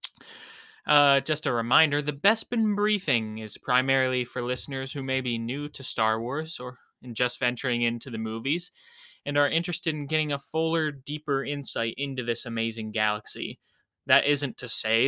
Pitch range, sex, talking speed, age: 120-155 Hz, male, 165 wpm, 20-39